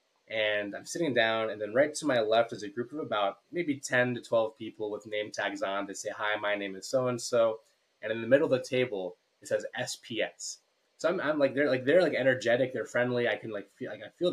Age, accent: 20-39, American